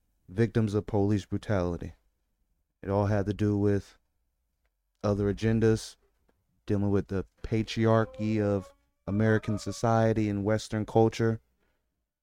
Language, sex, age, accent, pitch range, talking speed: English, male, 30-49, American, 90-115 Hz, 110 wpm